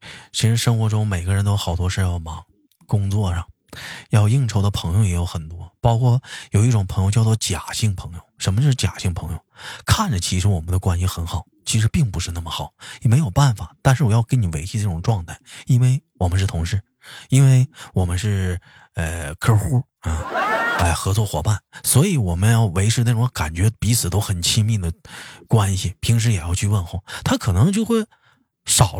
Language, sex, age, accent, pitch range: Chinese, male, 20-39, native, 90-125 Hz